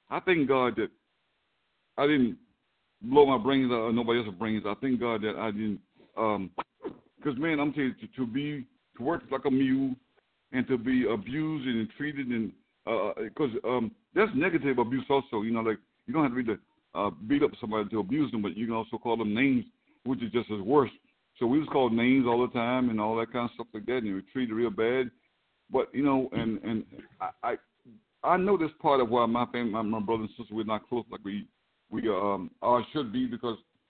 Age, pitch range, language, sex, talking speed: 60-79, 110-140 Hz, English, male, 230 wpm